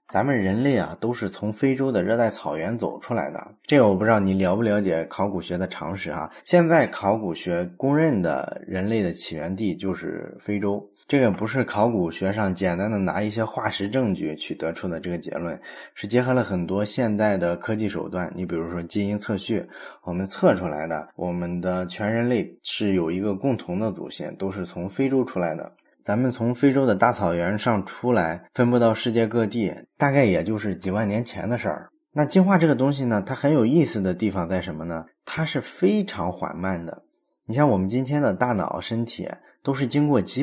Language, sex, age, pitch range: Chinese, male, 20-39, 95-130 Hz